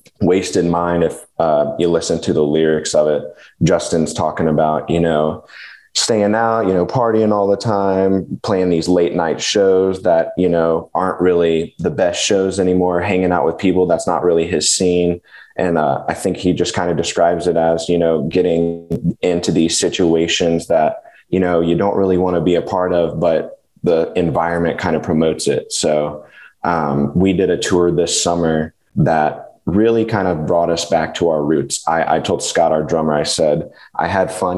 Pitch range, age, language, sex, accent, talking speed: 80-90 Hz, 20-39, English, male, American, 195 wpm